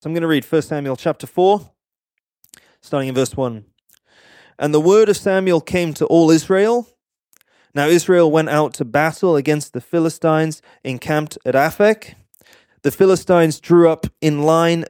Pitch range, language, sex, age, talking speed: 125-170 Hz, English, male, 20-39, 160 wpm